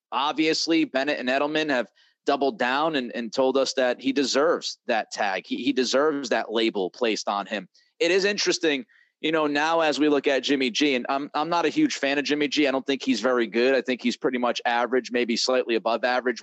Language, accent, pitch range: English, American, 125-160 Hz